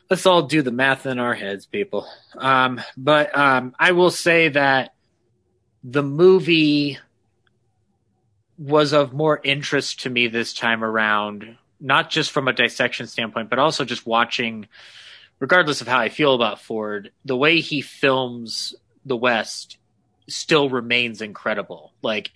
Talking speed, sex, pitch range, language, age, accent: 145 wpm, male, 110-135 Hz, English, 30-49, American